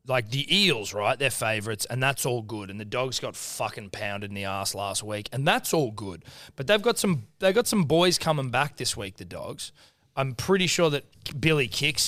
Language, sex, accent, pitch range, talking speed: English, male, Australian, 115-150 Hz, 225 wpm